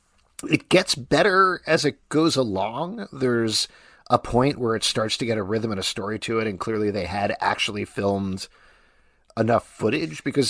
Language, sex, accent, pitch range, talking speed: English, male, American, 100-125 Hz, 175 wpm